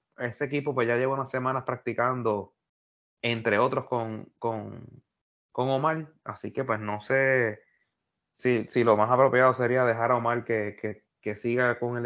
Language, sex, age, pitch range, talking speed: Spanish, male, 30-49, 110-135 Hz, 170 wpm